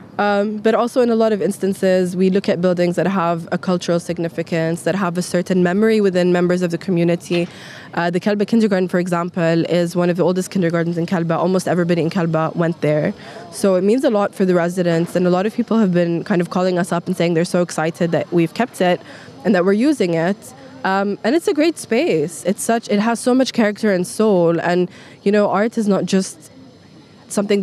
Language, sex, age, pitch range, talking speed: English, female, 20-39, 170-200 Hz, 225 wpm